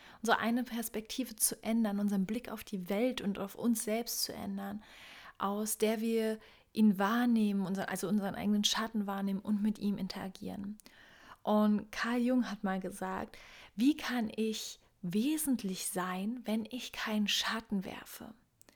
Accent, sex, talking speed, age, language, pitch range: German, female, 150 wpm, 30-49, German, 200-235 Hz